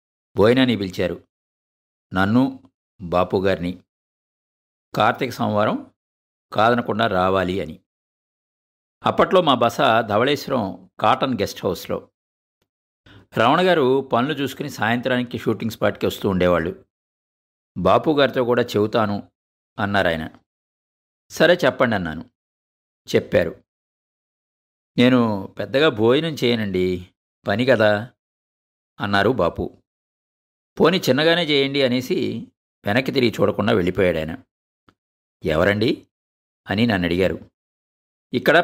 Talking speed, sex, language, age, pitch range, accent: 85 wpm, male, Telugu, 50-69, 80-120 Hz, native